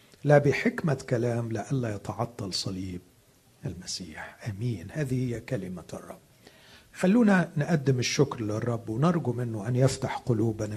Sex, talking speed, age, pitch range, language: male, 115 wpm, 50-69, 110-145 Hz, Arabic